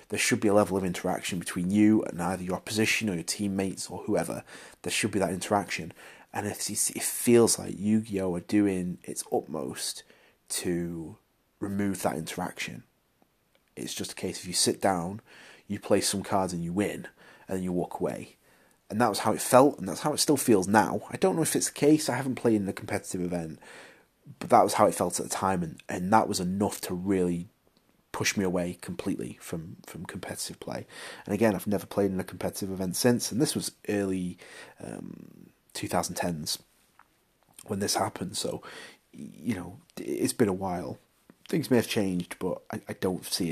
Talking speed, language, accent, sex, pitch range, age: 195 wpm, English, British, male, 90-110 Hz, 30-49